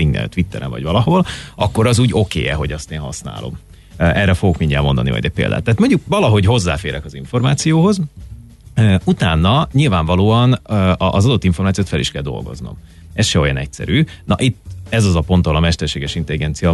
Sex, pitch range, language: male, 80-110 Hz, Hungarian